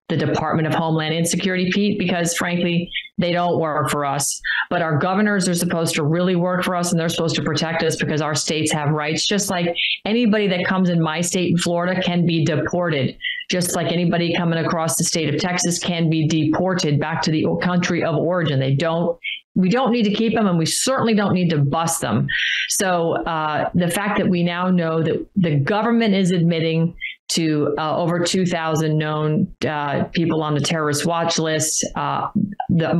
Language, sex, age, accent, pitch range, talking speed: English, female, 40-59, American, 160-180 Hz, 195 wpm